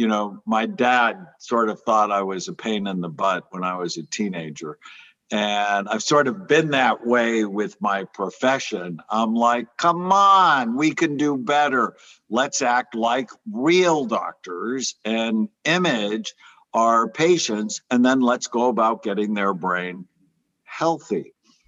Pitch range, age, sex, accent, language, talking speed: 95-125 Hz, 60-79, male, American, English, 150 wpm